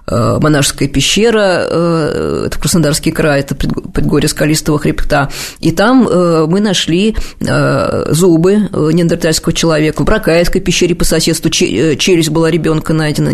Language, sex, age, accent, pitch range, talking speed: Russian, female, 20-39, native, 150-195 Hz, 115 wpm